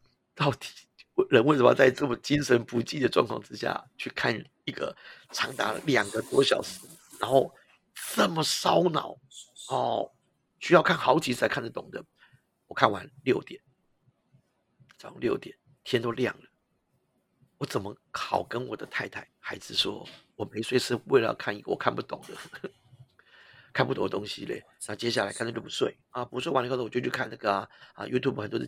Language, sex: Chinese, male